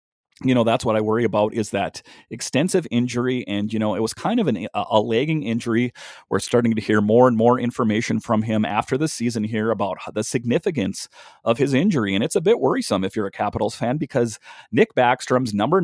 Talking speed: 210 wpm